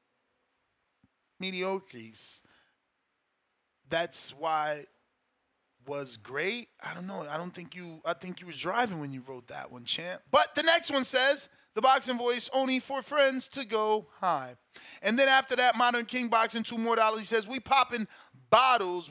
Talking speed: 170 wpm